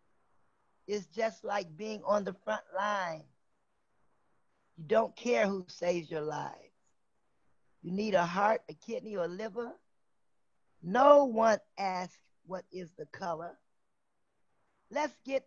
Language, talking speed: English, 130 wpm